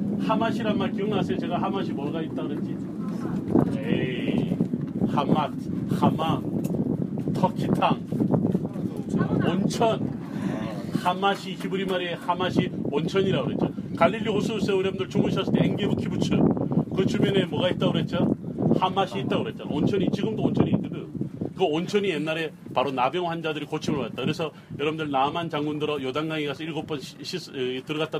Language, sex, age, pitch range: Korean, male, 40-59, 150-185 Hz